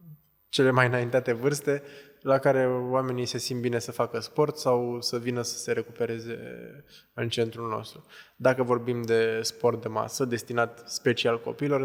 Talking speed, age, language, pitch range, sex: 155 wpm, 20-39, Romanian, 115-125 Hz, male